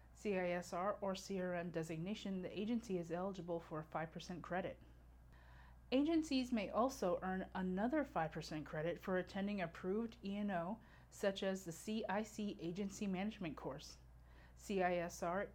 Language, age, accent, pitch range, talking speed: English, 30-49, American, 160-210 Hz, 125 wpm